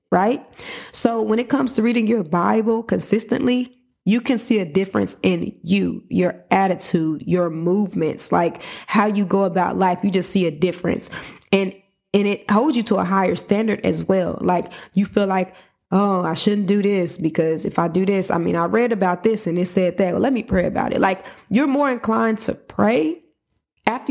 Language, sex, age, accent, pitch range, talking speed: English, female, 20-39, American, 185-220 Hz, 200 wpm